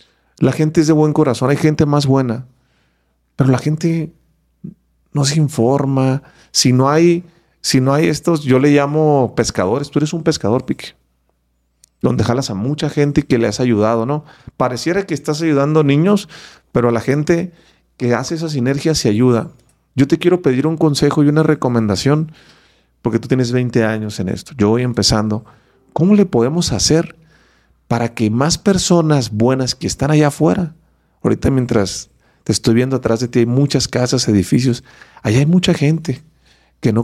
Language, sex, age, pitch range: English, male, 40-59, 120-155 Hz